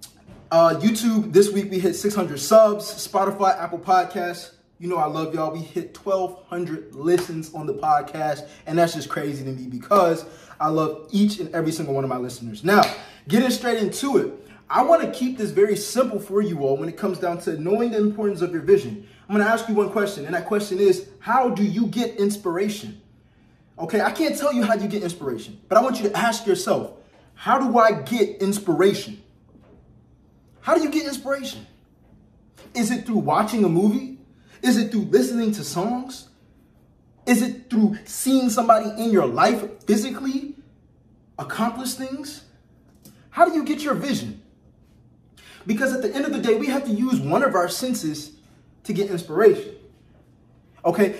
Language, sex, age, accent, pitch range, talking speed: English, male, 20-39, American, 175-240 Hz, 185 wpm